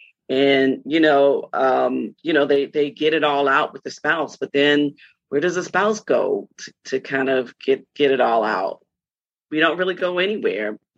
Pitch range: 140-175 Hz